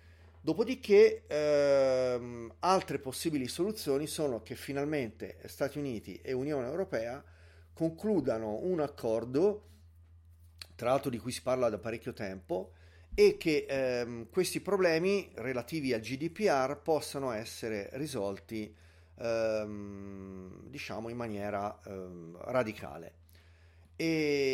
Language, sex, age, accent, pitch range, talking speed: Italian, male, 30-49, native, 100-145 Hz, 105 wpm